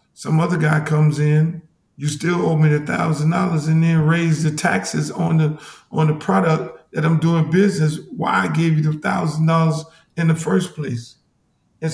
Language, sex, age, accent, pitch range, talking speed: English, male, 50-69, American, 150-175 Hz, 180 wpm